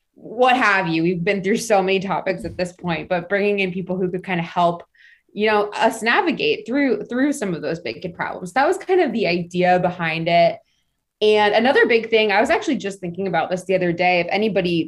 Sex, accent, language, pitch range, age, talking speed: female, American, English, 175-215 Hz, 20-39, 230 wpm